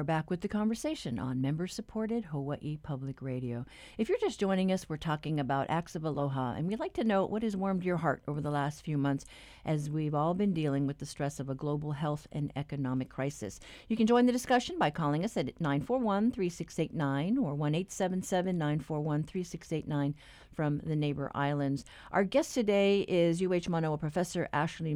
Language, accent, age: English, American, 50-69